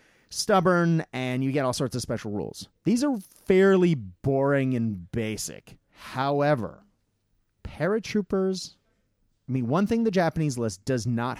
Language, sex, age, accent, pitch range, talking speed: English, male, 30-49, American, 105-145 Hz, 135 wpm